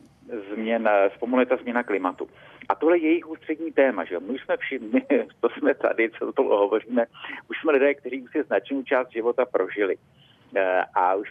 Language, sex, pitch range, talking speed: Czech, male, 115-185 Hz, 185 wpm